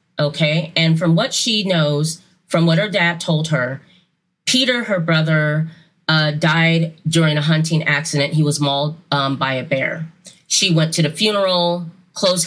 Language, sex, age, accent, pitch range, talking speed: English, female, 30-49, American, 155-180 Hz, 165 wpm